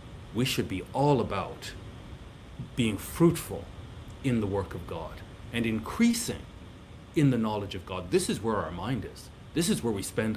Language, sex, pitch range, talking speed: English, male, 95-120 Hz, 175 wpm